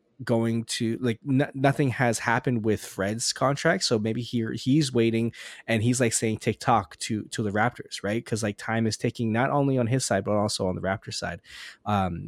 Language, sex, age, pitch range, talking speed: English, male, 20-39, 110-135 Hz, 205 wpm